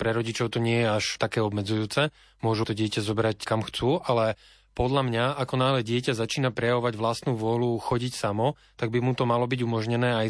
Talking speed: 200 wpm